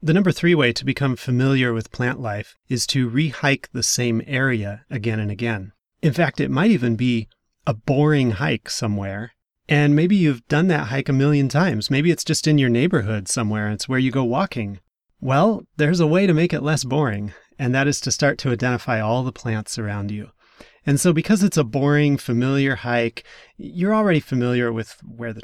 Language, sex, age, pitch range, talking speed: English, male, 30-49, 115-145 Hz, 205 wpm